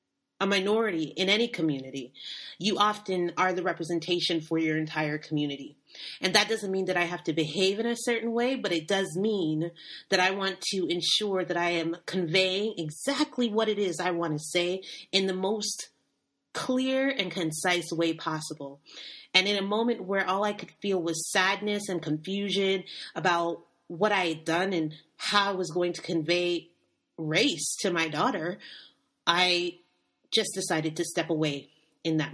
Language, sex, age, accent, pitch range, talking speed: English, female, 30-49, American, 160-205 Hz, 175 wpm